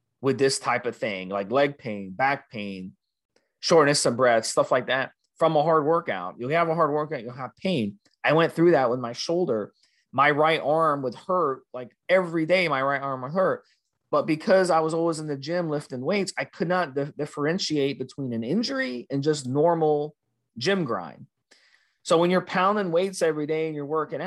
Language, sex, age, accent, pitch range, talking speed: English, male, 30-49, American, 125-160 Hz, 200 wpm